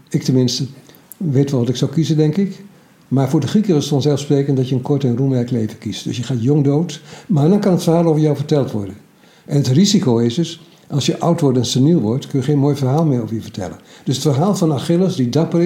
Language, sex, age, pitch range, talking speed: Dutch, male, 60-79, 130-160 Hz, 255 wpm